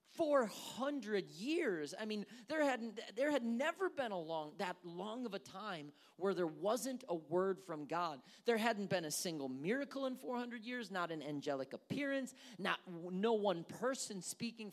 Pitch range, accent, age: 195-270 Hz, American, 40-59